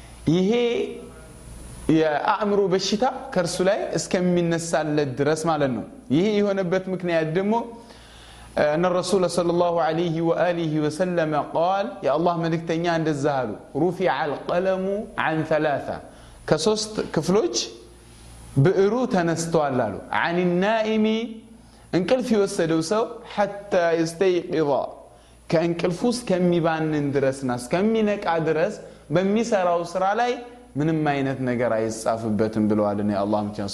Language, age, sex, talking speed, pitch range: Amharic, 20-39, male, 100 wpm, 155-210 Hz